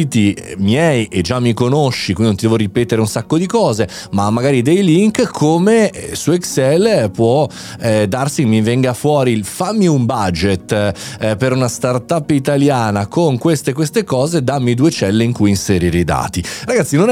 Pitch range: 105-145 Hz